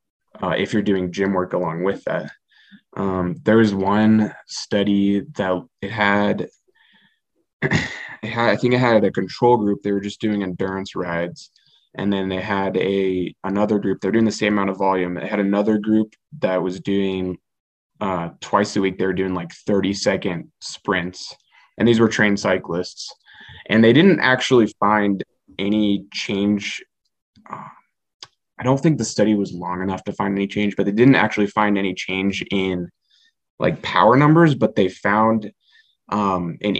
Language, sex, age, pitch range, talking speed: English, male, 20-39, 95-110 Hz, 170 wpm